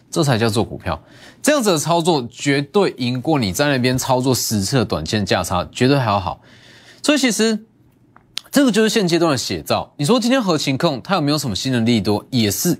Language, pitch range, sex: Chinese, 120-170 Hz, male